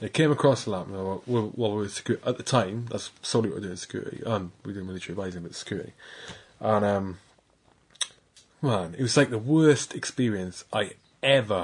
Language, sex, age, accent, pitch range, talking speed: English, male, 20-39, British, 105-145 Hz, 190 wpm